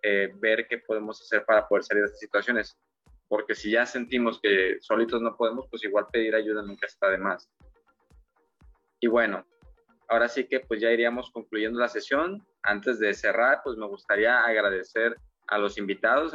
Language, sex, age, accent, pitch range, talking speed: Spanish, male, 20-39, Mexican, 105-120 Hz, 175 wpm